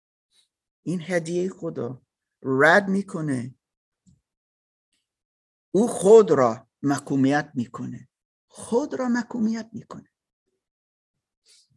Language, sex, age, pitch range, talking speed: Persian, male, 50-69, 135-205 Hz, 70 wpm